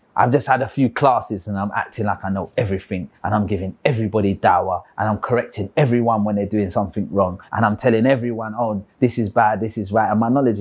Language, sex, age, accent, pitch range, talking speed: English, male, 30-49, British, 100-130 Hz, 230 wpm